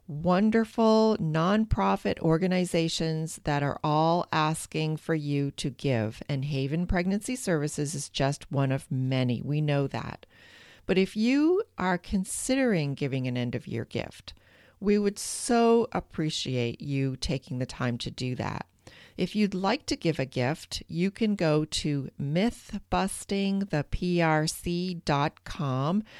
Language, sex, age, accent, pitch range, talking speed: English, female, 40-59, American, 140-190 Hz, 130 wpm